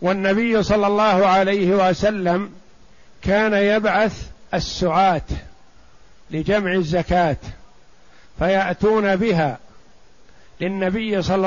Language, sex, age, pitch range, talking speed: Arabic, male, 60-79, 185-210 Hz, 75 wpm